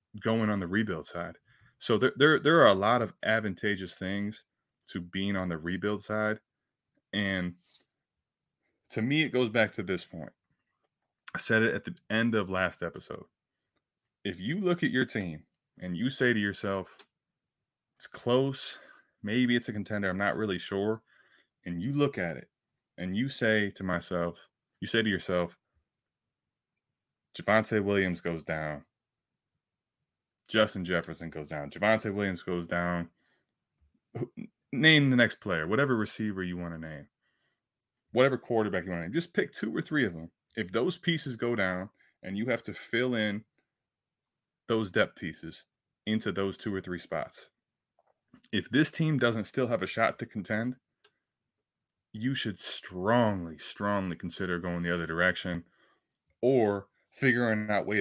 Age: 20-39